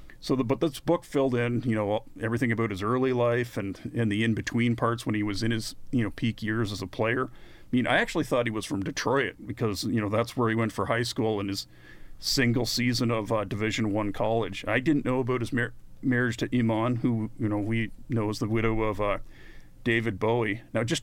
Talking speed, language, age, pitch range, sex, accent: 235 wpm, English, 40-59, 110-125 Hz, male, American